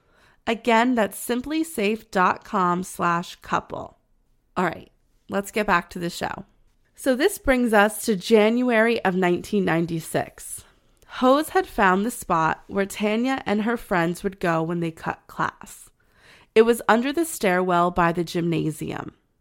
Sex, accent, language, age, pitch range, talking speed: female, American, English, 20-39, 180-225 Hz, 135 wpm